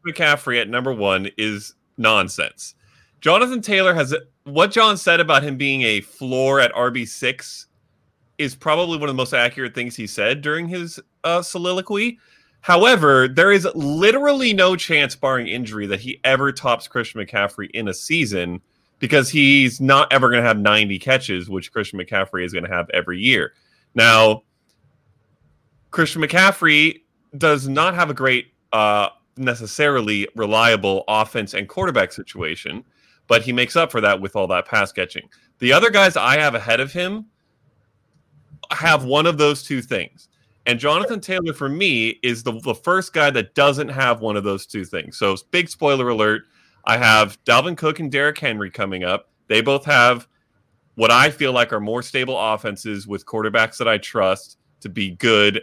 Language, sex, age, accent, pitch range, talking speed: English, male, 30-49, American, 110-150 Hz, 170 wpm